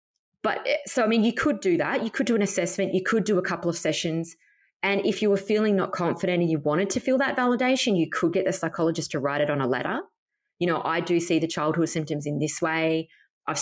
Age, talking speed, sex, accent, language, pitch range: 20-39, 250 wpm, female, Australian, English, 150-200 Hz